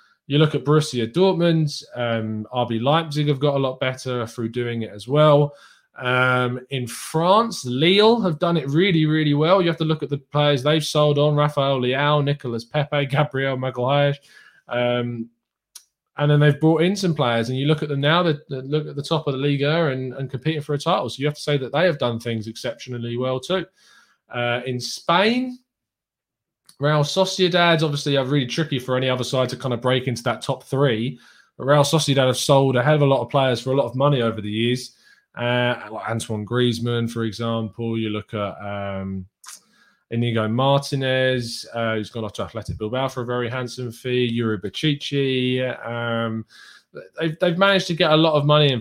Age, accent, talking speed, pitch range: 20-39, British, 200 wpm, 120-150 Hz